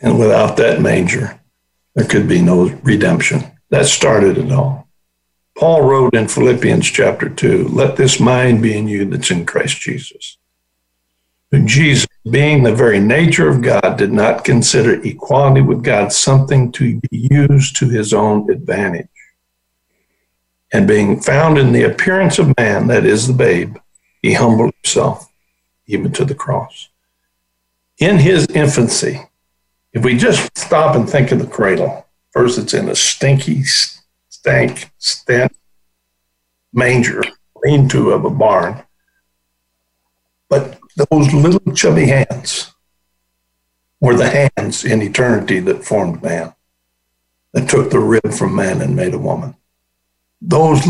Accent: American